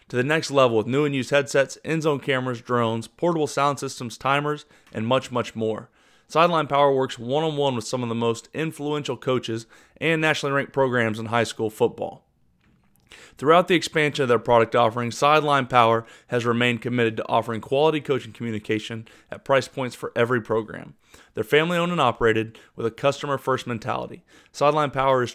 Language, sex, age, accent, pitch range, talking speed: English, male, 30-49, American, 115-145 Hz, 180 wpm